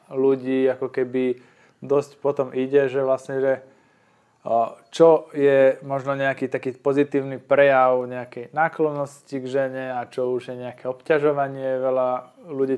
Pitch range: 125-140 Hz